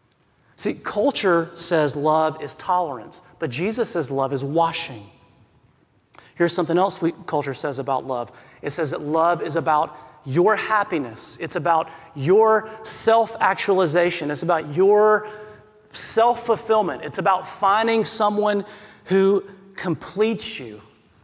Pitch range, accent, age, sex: 150-200 Hz, American, 30-49, male